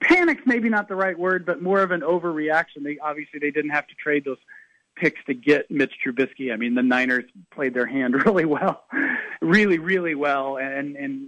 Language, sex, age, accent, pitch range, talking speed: English, male, 40-59, American, 145-190 Hz, 200 wpm